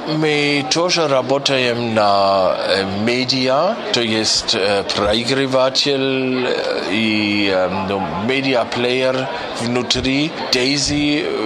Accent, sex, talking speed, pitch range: German, male, 65 wpm, 115-130 Hz